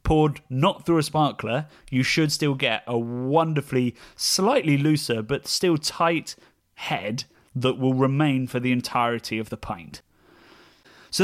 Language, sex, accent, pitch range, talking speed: English, male, British, 125-160 Hz, 145 wpm